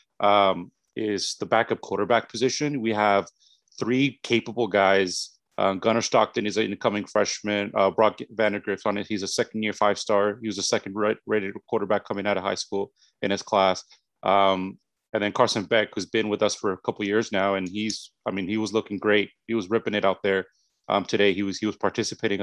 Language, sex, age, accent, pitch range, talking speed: English, male, 30-49, American, 100-115 Hz, 210 wpm